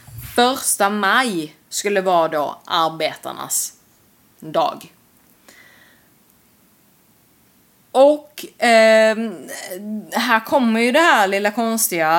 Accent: native